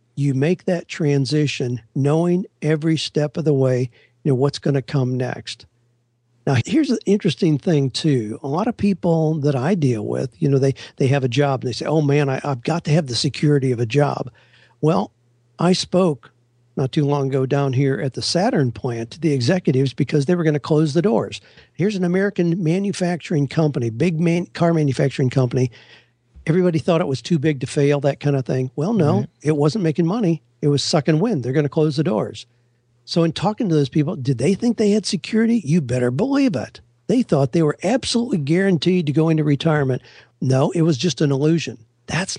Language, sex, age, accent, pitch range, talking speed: English, male, 50-69, American, 130-170 Hz, 210 wpm